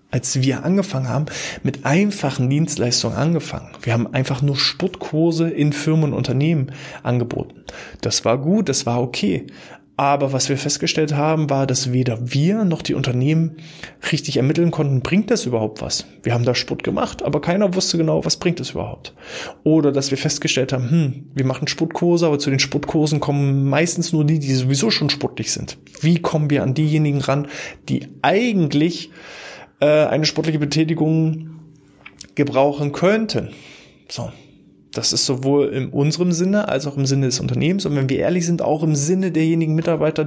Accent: German